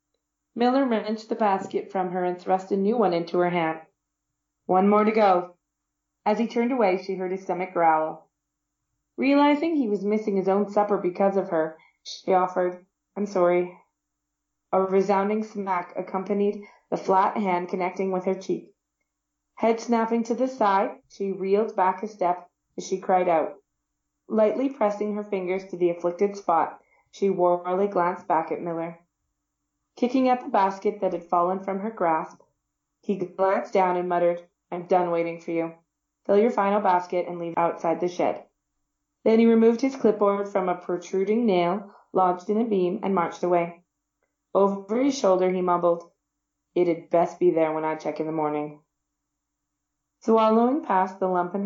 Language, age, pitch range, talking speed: English, 30-49, 175-205 Hz, 170 wpm